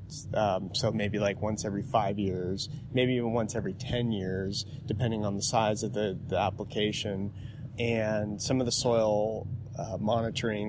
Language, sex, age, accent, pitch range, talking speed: English, male, 30-49, American, 105-125 Hz, 165 wpm